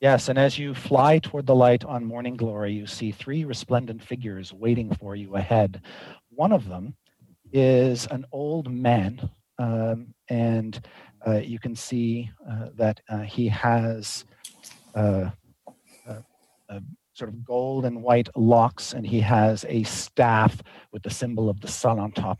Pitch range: 105-125 Hz